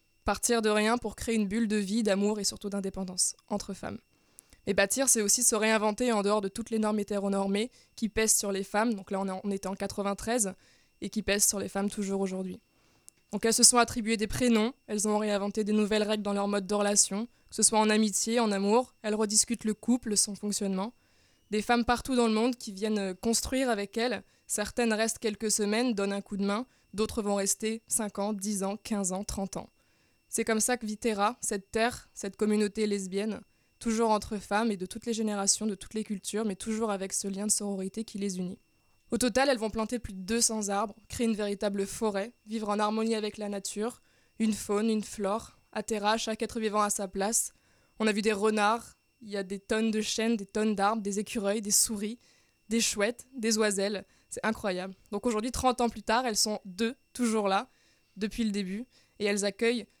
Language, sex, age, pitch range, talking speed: French, female, 20-39, 200-225 Hz, 215 wpm